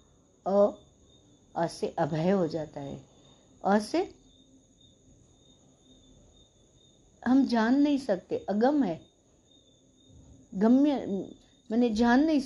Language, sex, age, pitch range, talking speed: Hindi, female, 60-79, 160-250 Hz, 85 wpm